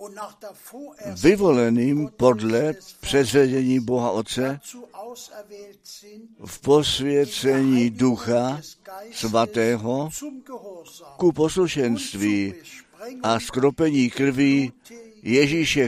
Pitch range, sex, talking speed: 120-180 Hz, male, 55 wpm